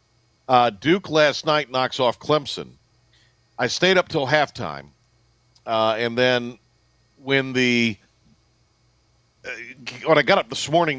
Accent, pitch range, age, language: American, 110-135 Hz, 50-69, English